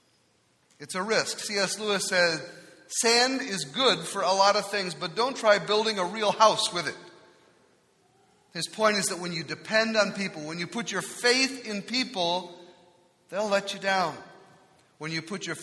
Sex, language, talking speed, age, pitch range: male, English, 180 wpm, 40-59, 175-215 Hz